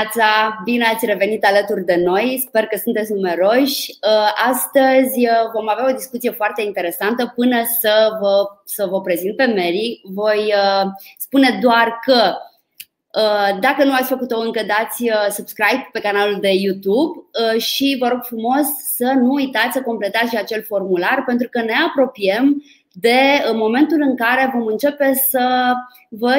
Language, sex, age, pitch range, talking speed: Romanian, female, 20-39, 215-275 Hz, 145 wpm